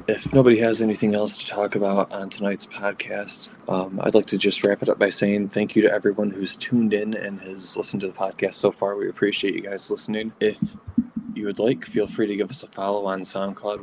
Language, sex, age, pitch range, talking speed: English, male, 20-39, 100-115 Hz, 235 wpm